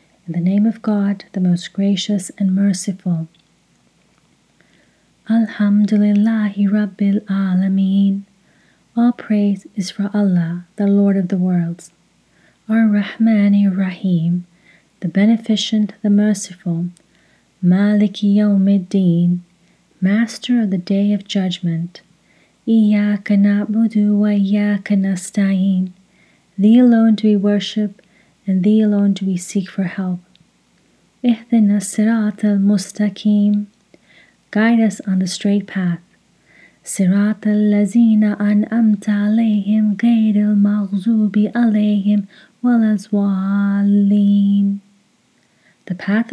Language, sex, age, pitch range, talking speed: English, female, 30-49, 190-210 Hz, 85 wpm